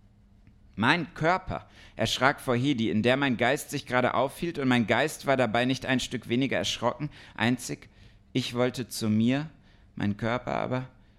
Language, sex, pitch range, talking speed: German, male, 110-145 Hz, 160 wpm